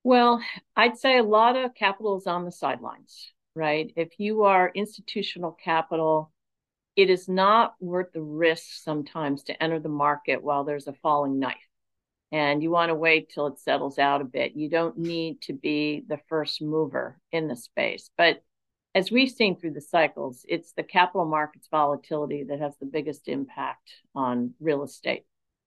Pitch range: 150-185 Hz